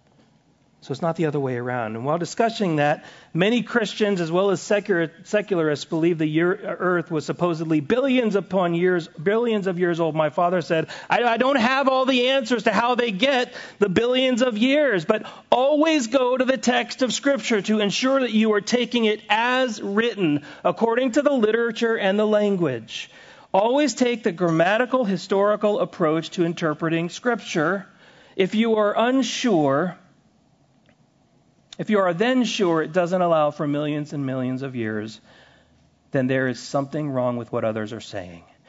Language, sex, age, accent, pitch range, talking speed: English, male, 40-59, American, 160-240 Hz, 170 wpm